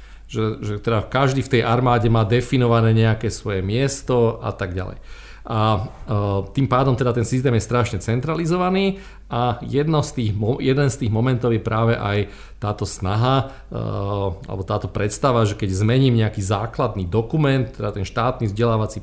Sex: male